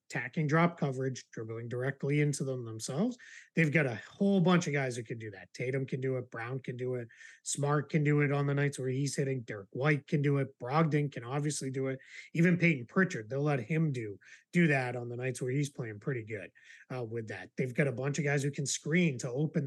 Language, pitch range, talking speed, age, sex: English, 125-160 Hz, 240 wpm, 20-39, male